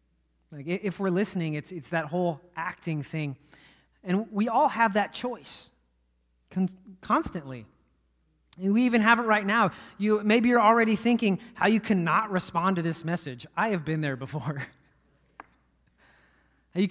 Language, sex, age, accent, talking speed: English, male, 30-49, American, 155 wpm